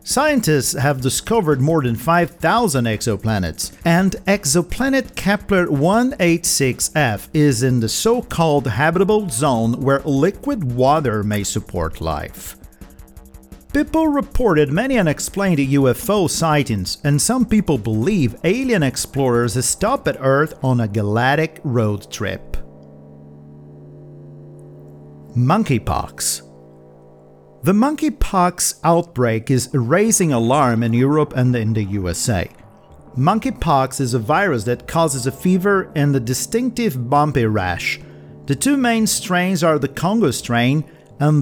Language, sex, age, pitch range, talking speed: Portuguese, male, 50-69, 115-175 Hz, 110 wpm